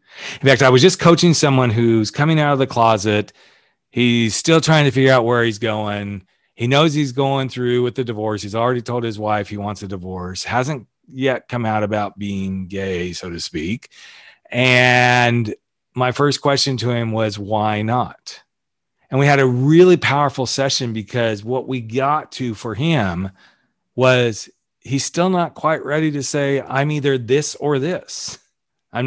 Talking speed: 180 wpm